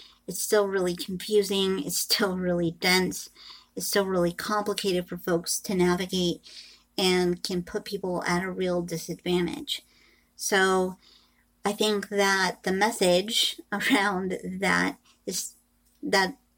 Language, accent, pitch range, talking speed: English, American, 180-210 Hz, 125 wpm